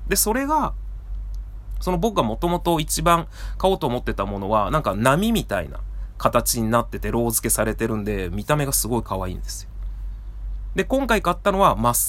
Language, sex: Japanese, male